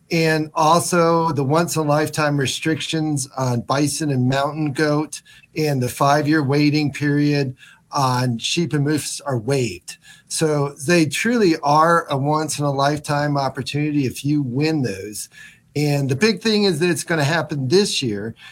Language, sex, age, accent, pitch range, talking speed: English, male, 40-59, American, 140-155 Hz, 145 wpm